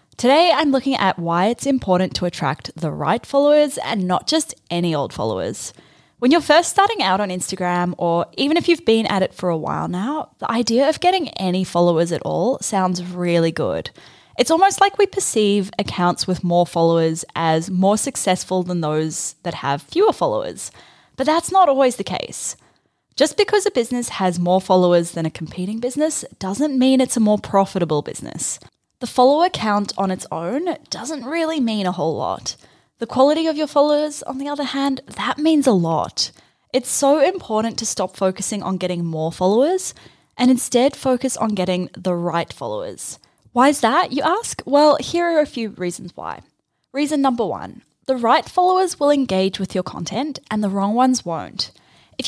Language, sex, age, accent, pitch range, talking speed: English, female, 10-29, Australian, 180-285 Hz, 185 wpm